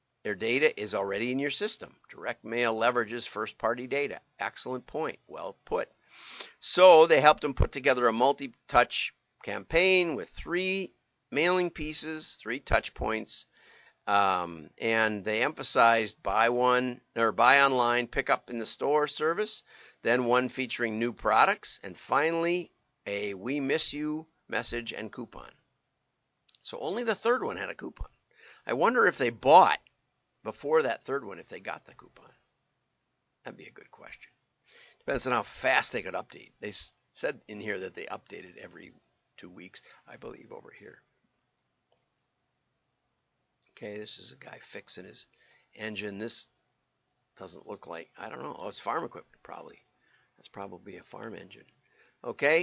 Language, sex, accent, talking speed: English, male, American, 155 wpm